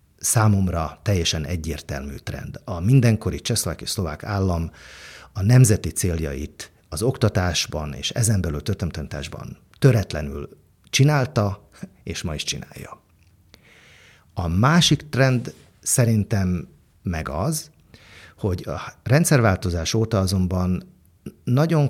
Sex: male